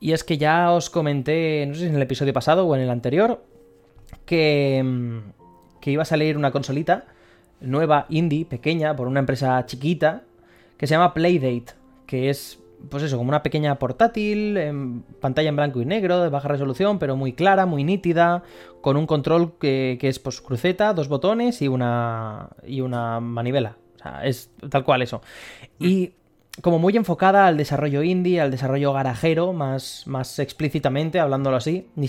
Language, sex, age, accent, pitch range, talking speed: Spanish, male, 20-39, Spanish, 130-170 Hz, 175 wpm